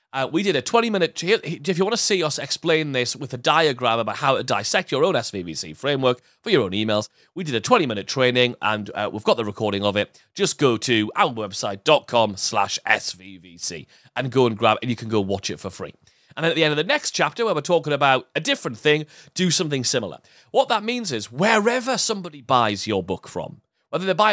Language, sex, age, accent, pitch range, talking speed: English, male, 30-49, British, 120-180 Hz, 225 wpm